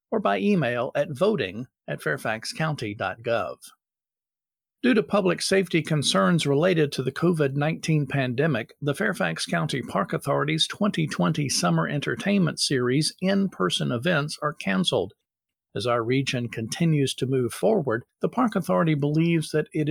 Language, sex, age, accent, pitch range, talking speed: English, male, 50-69, American, 135-175 Hz, 130 wpm